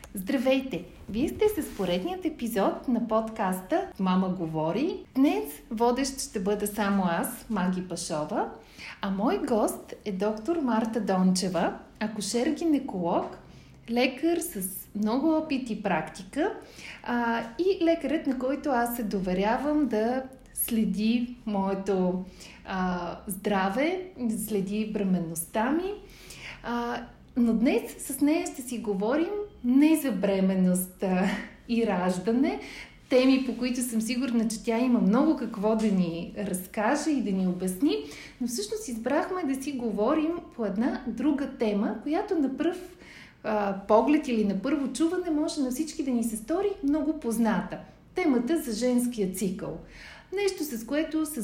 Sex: female